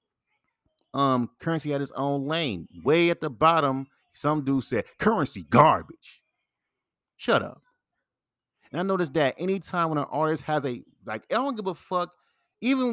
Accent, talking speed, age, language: American, 160 wpm, 30-49, English